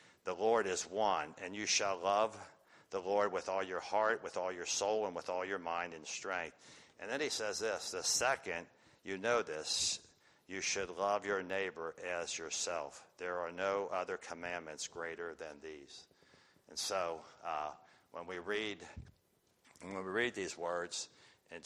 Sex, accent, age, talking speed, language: male, American, 60-79, 170 wpm, English